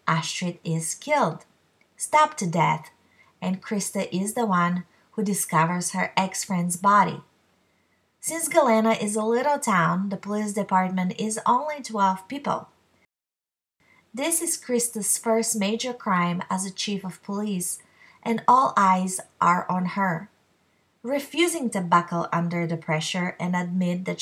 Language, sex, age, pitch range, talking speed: English, female, 30-49, 180-230 Hz, 135 wpm